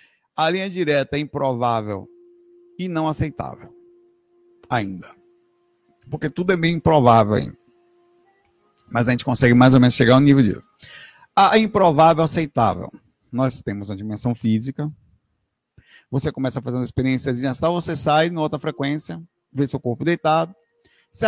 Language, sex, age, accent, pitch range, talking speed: Portuguese, male, 50-69, Brazilian, 125-175 Hz, 140 wpm